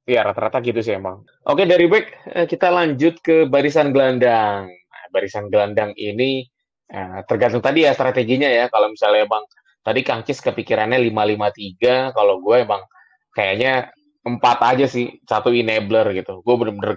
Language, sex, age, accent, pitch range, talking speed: Indonesian, male, 20-39, native, 110-140 Hz, 150 wpm